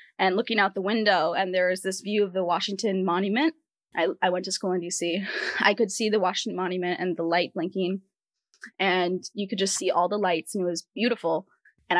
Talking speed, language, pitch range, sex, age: 220 wpm, English, 180-215 Hz, female, 10-29